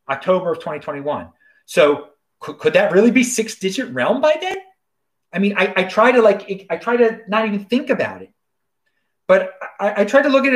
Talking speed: 200 wpm